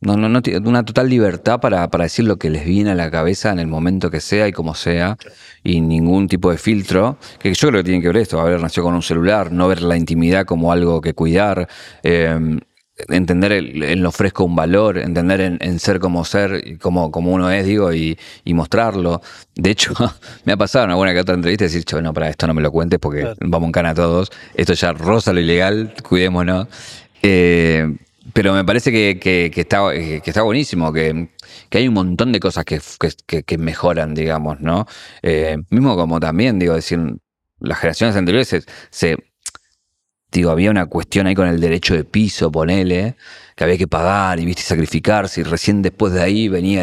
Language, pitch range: Spanish, 85-100 Hz